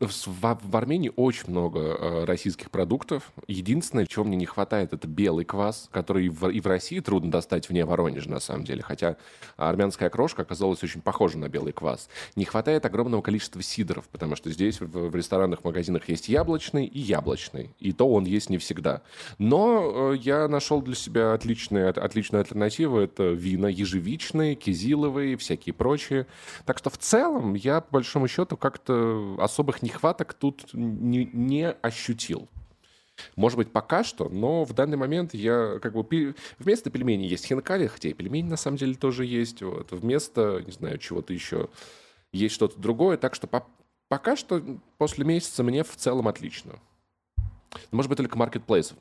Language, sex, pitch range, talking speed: Russian, male, 95-135 Hz, 165 wpm